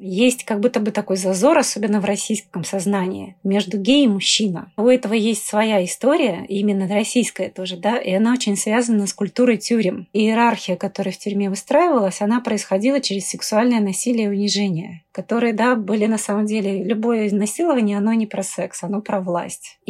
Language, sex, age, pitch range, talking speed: Russian, female, 30-49, 200-235 Hz, 170 wpm